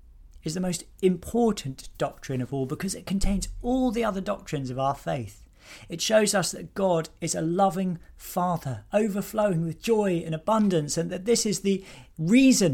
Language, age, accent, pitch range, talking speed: English, 40-59, British, 120-180 Hz, 175 wpm